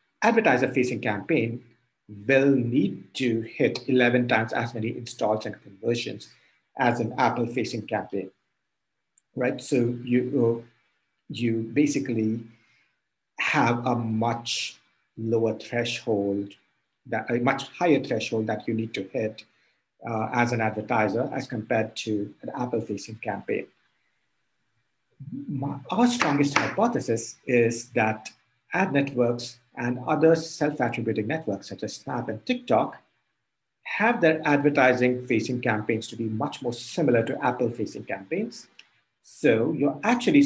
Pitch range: 110-130 Hz